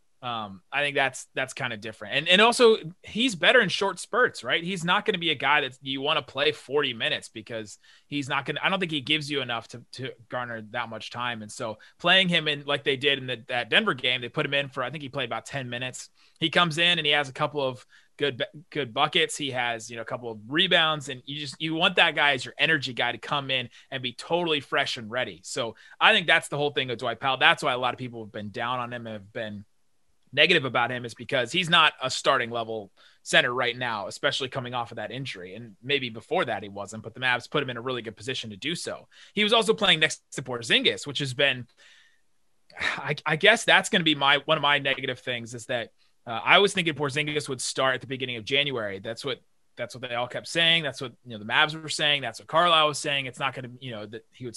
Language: English